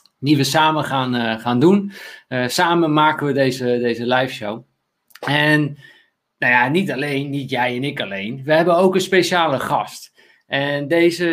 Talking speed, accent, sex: 175 wpm, Dutch, male